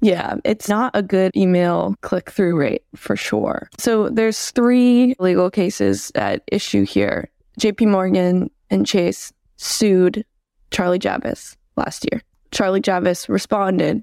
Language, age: English, 20-39